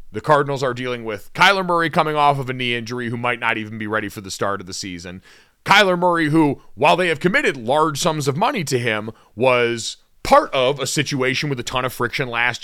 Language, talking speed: English, 235 wpm